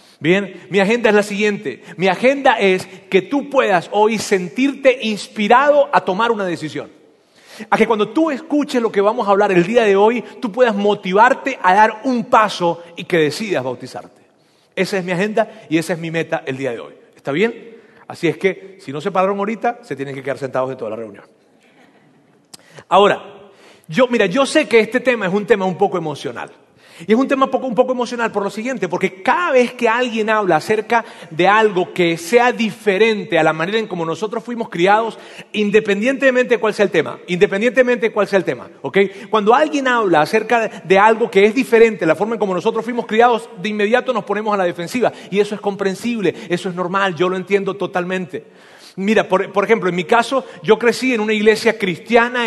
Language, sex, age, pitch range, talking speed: Spanish, male, 40-59, 185-235 Hz, 205 wpm